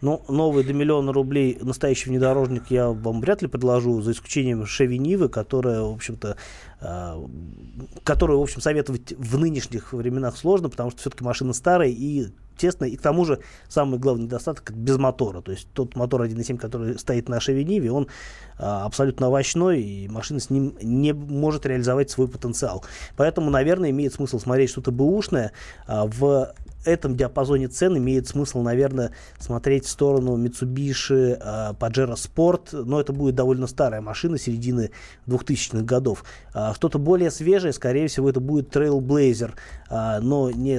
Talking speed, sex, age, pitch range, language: 150 wpm, male, 20-39, 120-140 Hz, Russian